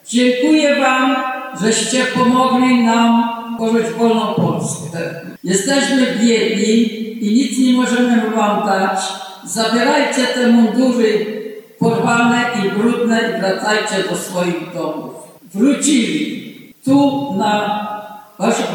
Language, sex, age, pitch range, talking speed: Polish, female, 50-69, 215-245 Hz, 100 wpm